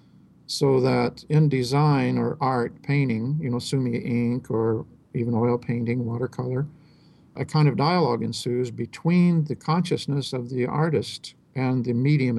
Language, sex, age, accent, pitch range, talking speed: English, male, 50-69, American, 120-145 Hz, 145 wpm